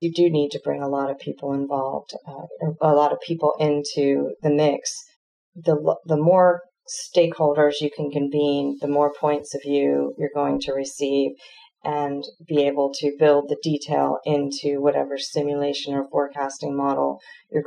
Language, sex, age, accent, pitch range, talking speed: English, female, 40-59, American, 135-150 Hz, 165 wpm